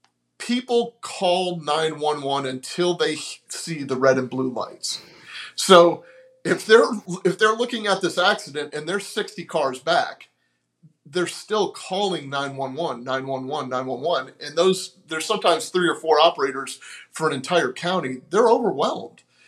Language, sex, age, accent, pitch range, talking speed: English, male, 30-49, American, 135-180 Hz, 140 wpm